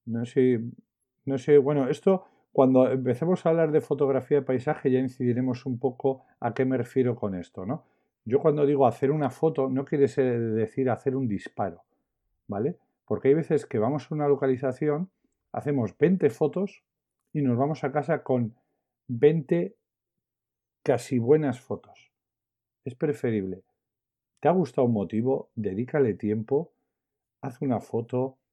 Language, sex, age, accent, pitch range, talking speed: Spanish, male, 50-69, Spanish, 110-140 Hz, 155 wpm